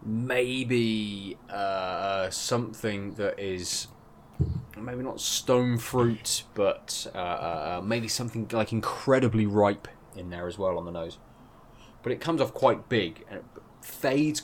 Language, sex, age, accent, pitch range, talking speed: English, male, 20-39, British, 105-125 Hz, 135 wpm